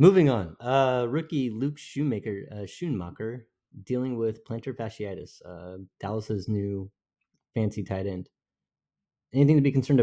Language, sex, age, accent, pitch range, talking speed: English, male, 30-49, American, 100-125 Hz, 125 wpm